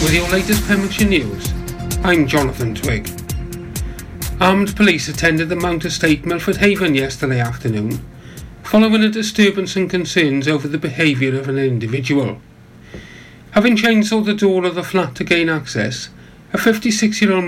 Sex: male